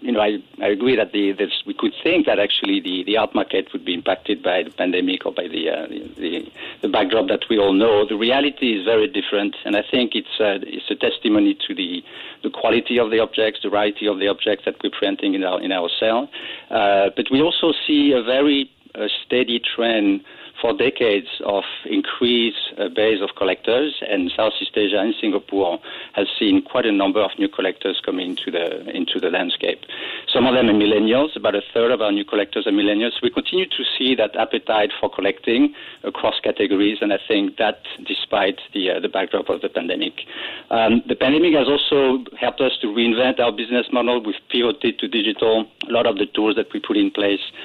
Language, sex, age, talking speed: English, male, 50-69, 210 wpm